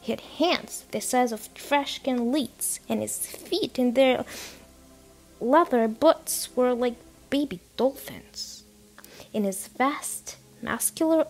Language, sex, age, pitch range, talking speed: English, female, 20-39, 200-255 Hz, 125 wpm